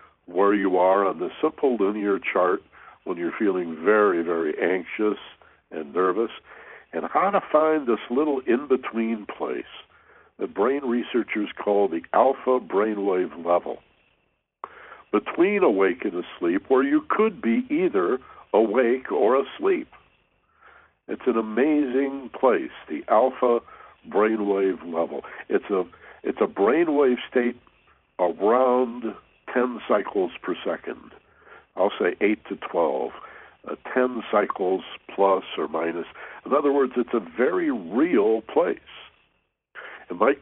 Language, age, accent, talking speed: English, 60-79, American, 125 wpm